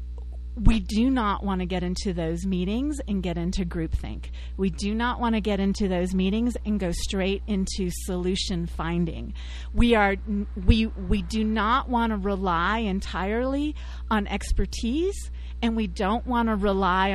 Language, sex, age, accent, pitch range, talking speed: English, female, 40-59, American, 165-235 Hz, 160 wpm